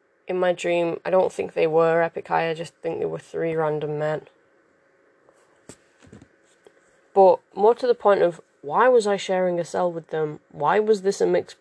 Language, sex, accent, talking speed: English, female, British, 190 wpm